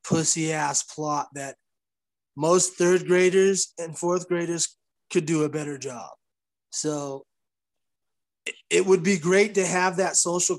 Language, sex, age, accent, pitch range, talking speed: English, male, 30-49, American, 150-180 Hz, 135 wpm